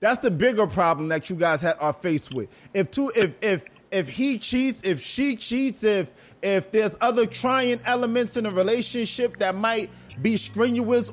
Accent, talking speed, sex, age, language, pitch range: American, 180 wpm, male, 20-39, English, 190-250 Hz